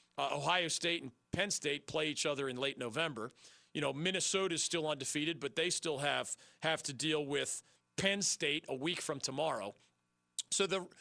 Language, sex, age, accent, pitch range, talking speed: English, male, 40-59, American, 155-200 Hz, 185 wpm